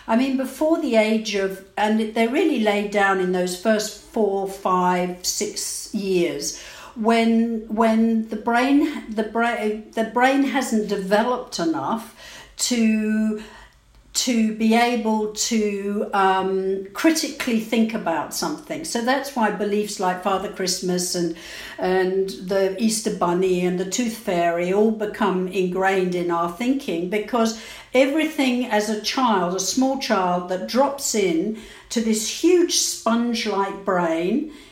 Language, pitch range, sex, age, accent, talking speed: English, 195-250 Hz, female, 60-79, British, 135 wpm